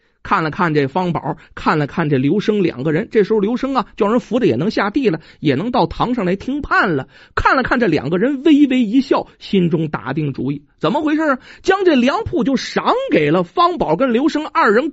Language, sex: Chinese, male